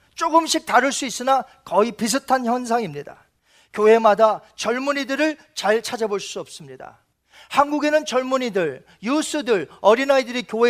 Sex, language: male, Korean